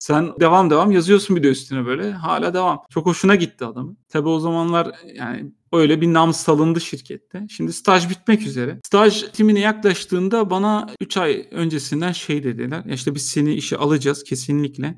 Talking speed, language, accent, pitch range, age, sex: 170 wpm, Turkish, native, 135-180 Hz, 40-59, male